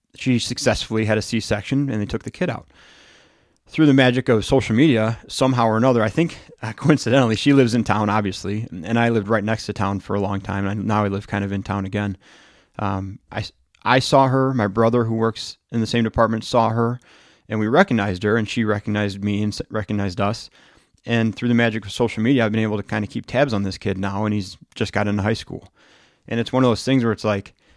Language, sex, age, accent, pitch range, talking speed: English, male, 30-49, American, 100-120 Hz, 235 wpm